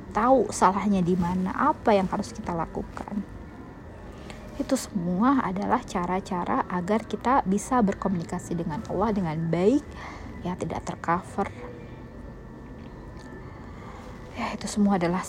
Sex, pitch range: female, 175-220 Hz